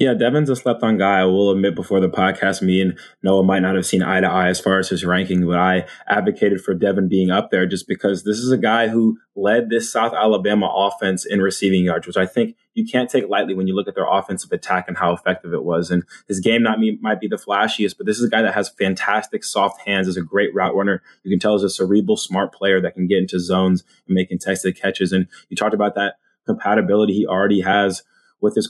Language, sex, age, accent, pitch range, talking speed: English, male, 20-39, American, 95-105 Hz, 250 wpm